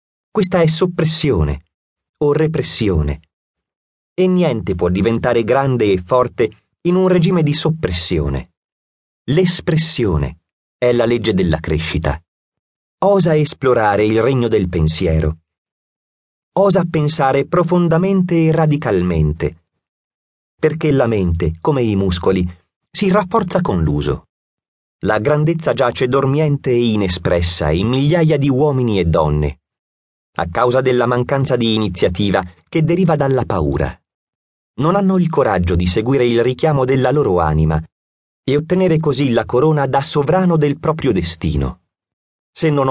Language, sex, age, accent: Italian, male, 30-49, native